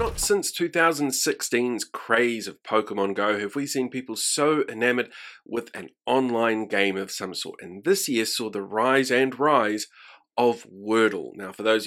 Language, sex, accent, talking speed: English, male, Australian, 165 wpm